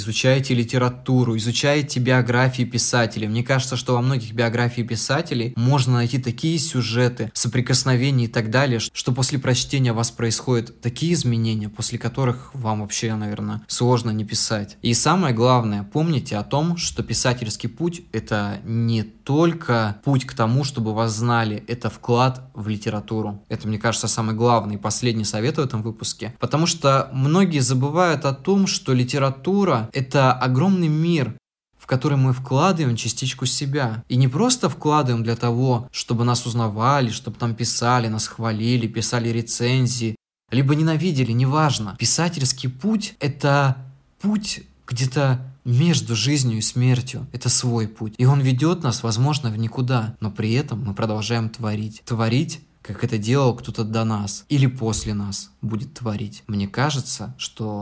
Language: Russian